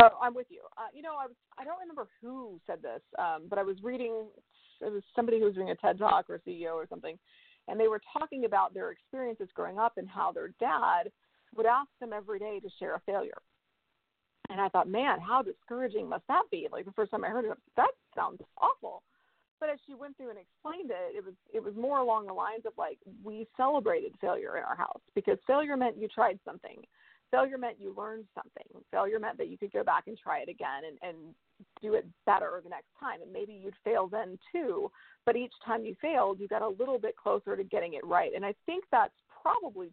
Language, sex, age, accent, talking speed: English, female, 40-59, American, 230 wpm